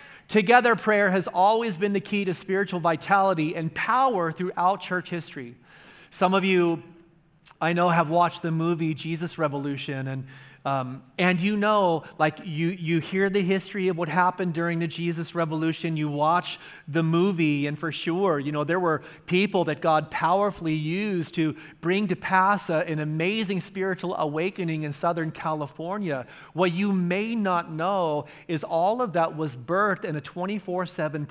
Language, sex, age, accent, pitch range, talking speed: English, male, 40-59, American, 165-200 Hz, 165 wpm